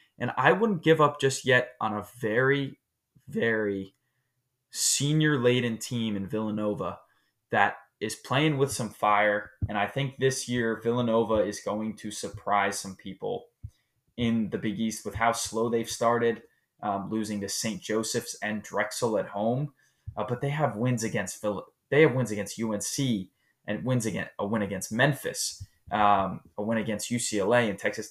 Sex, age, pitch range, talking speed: male, 20-39, 105-125 Hz, 165 wpm